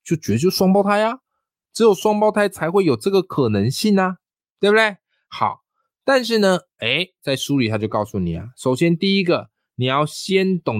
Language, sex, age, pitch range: Chinese, male, 20-39, 110-180 Hz